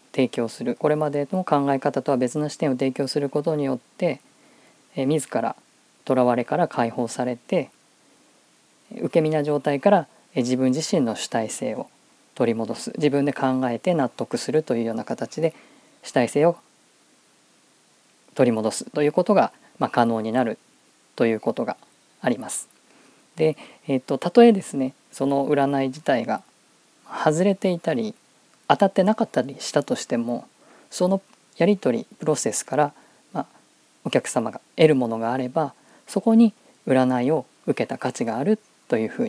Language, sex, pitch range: Japanese, female, 125-165 Hz